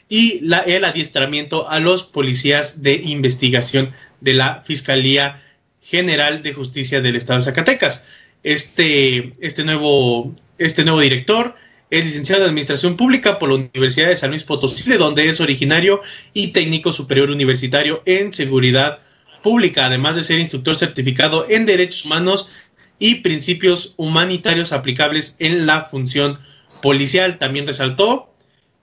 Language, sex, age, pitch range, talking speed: Spanish, male, 30-49, 140-170 Hz, 130 wpm